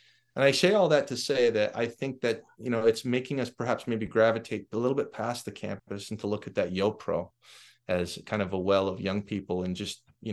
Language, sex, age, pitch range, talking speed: English, male, 30-49, 95-115 Hz, 245 wpm